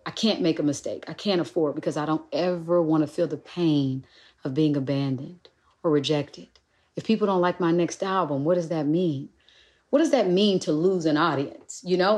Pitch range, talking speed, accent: 155-215 Hz, 210 wpm, American